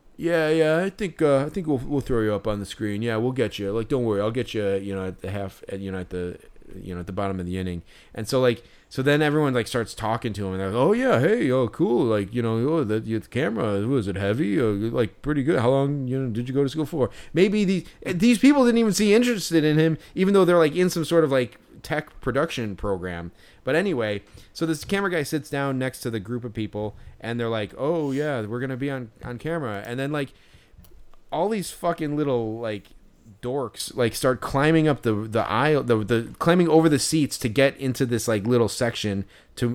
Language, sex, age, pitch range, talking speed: English, male, 30-49, 105-150 Hz, 250 wpm